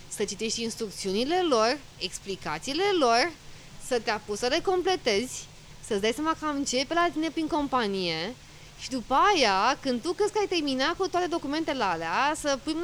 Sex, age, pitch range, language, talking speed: female, 20-39, 215-280 Hz, Romanian, 170 wpm